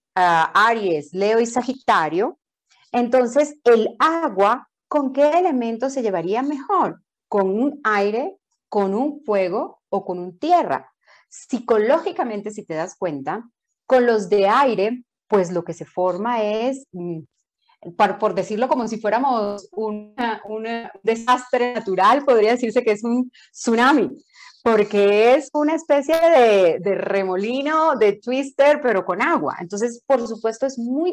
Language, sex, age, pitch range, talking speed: Spanish, female, 30-49, 200-270 Hz, 135 wpm